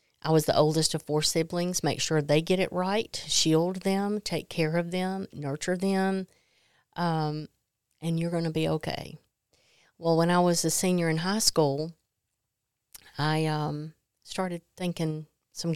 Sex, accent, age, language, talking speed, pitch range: female, American, 40-59, English, 160 wpm, 145-170 Hz